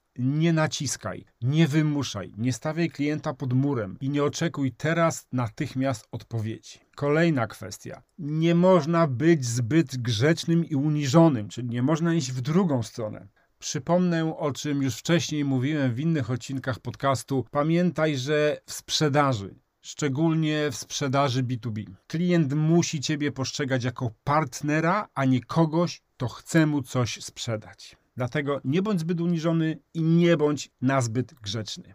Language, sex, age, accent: Polish, male, 40-59, native